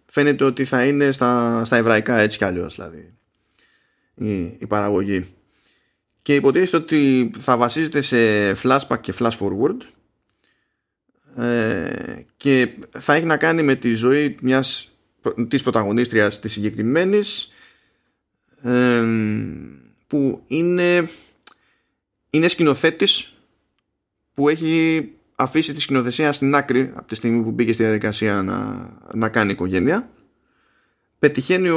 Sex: male